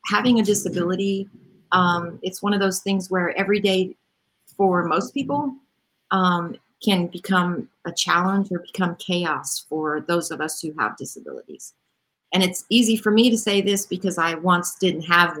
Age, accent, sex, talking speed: 40-59, American, female, 170 wpm